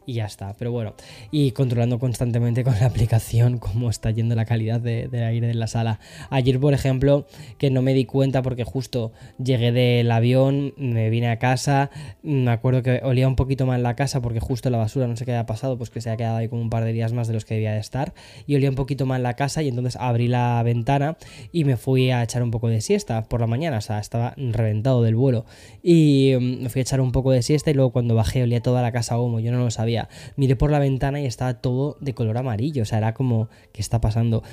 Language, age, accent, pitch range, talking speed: Spanish, 10-29, Spanish, 115-135 Hz, 255 wpm